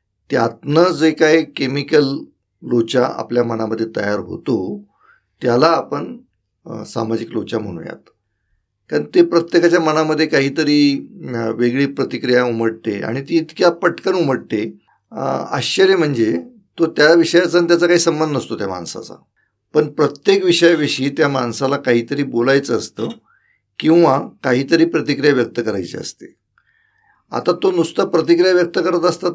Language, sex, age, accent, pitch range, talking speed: Marathi, male, 50-69, native, 120-165 Hz, 120 wpm